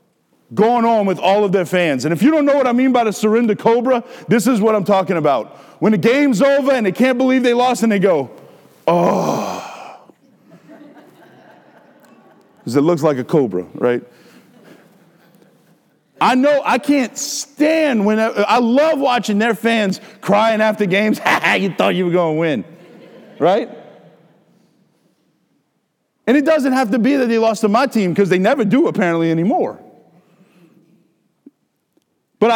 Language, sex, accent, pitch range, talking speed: English, male, American, 185-250 Hz, 165 wpm